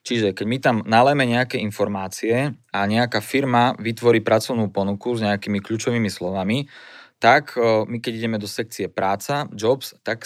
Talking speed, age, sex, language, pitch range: 150 wpm, 20-39, male, Slovak, 105-125 Hz